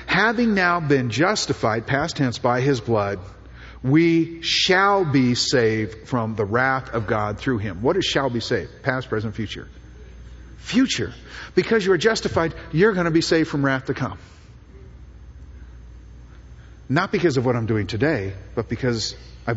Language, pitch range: English, 95-140 Hz